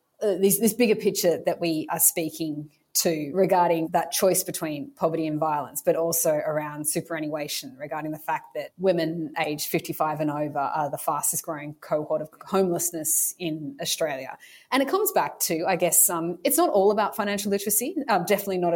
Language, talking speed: English, 180 wpm